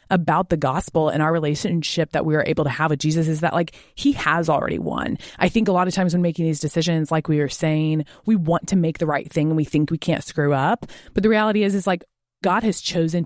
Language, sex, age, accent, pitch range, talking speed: English, female, 20-39, American, 150-195 Hz, 265 wpm